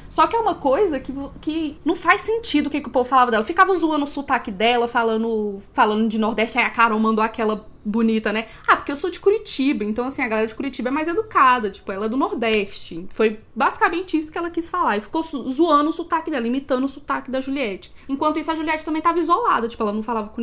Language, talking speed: Portuguese, 245 wpm